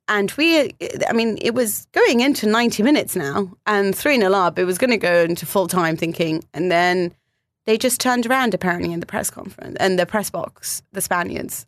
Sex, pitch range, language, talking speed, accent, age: female, 175-220 Hz, English, 200 wpm, British, 30-49